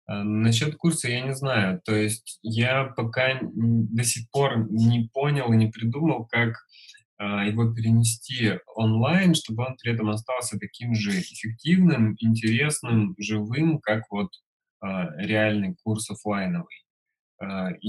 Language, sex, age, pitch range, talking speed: Russian, male, 20-39, 105-135 Hz, 120 wpm